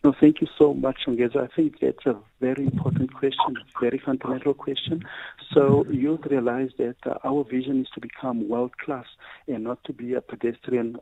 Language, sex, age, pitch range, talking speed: English, male, 50-69, 115-135 Hz, 175 wpm